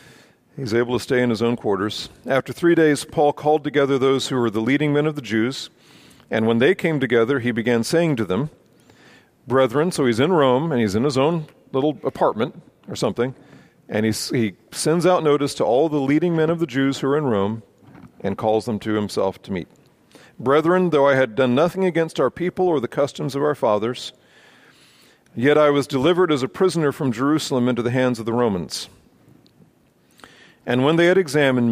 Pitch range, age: 120-155 Hz, 40-59